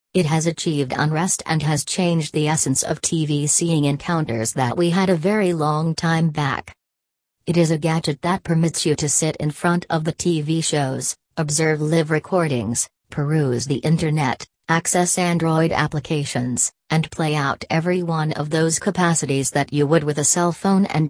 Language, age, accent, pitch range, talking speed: English, 40-59, American, 145-175 Hz, 175 wpm